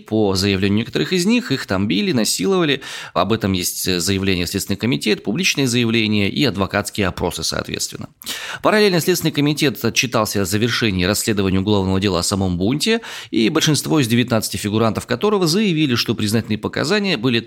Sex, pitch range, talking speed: male, 95-130 Hz, 150 wpm